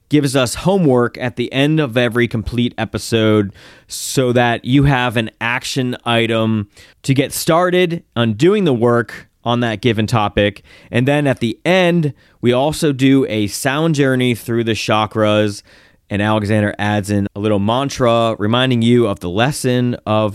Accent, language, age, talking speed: American, English, 30-49, 160 wpm